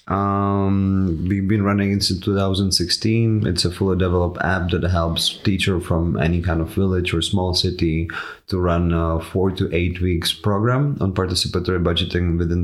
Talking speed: 165 wpm